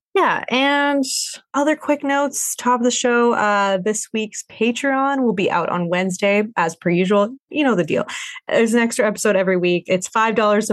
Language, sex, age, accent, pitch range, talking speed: English, female, 20-39, American, 180-250 Hz, 185 wpm